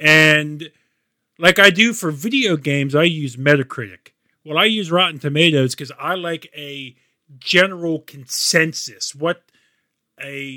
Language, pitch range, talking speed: English, 130-165 Hz, 130 wpm